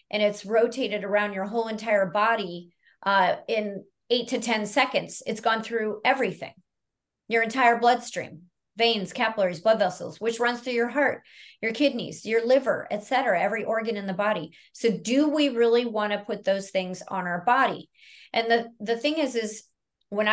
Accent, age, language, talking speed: American, 40-59, English, 175 wpm